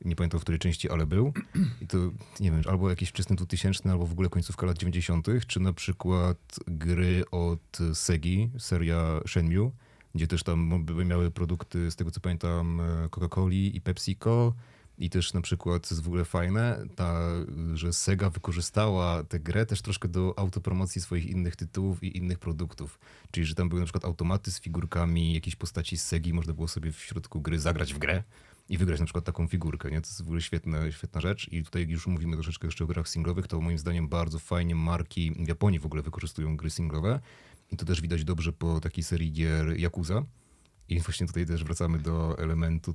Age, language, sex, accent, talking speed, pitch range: 30-49, Polish, male, native, 200 wpm, 85-95 Hz